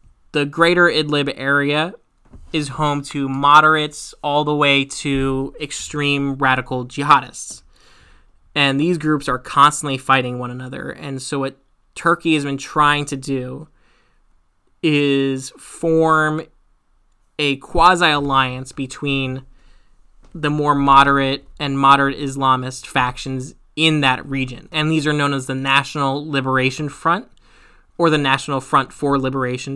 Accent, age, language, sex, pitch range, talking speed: American, 10-29, English, male, 130-150 Hz, 125 wpm